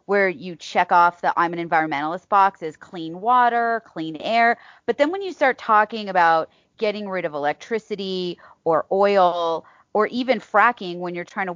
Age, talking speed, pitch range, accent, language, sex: 30-49, 175 wpm, 170-225 Hz, American, English, female